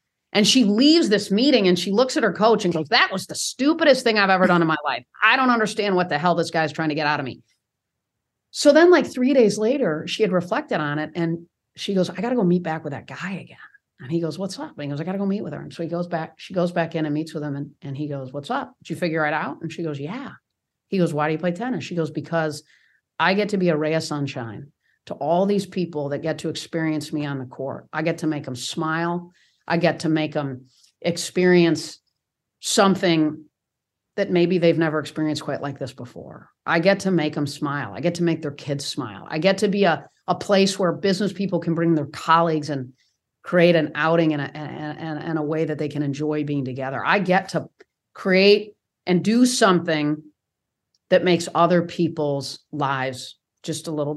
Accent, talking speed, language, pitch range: American, 235 wpm, English, 150-185 Hz